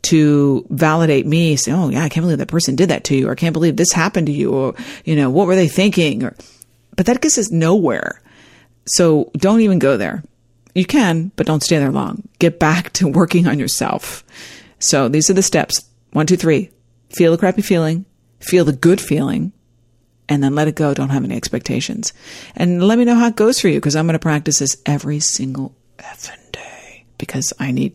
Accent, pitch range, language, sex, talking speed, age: American, 140-180 Hz, English, female, 215 wpm, 40-59